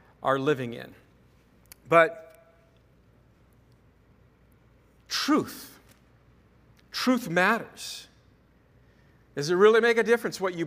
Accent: American